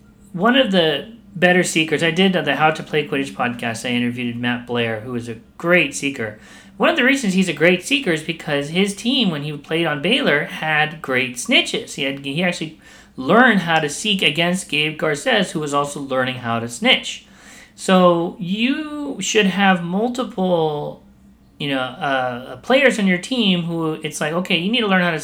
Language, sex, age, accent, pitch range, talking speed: English, male, 40-59, American, 135-190 Hz, 195 wpm